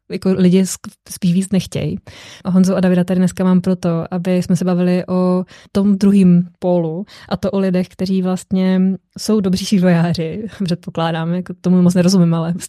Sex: female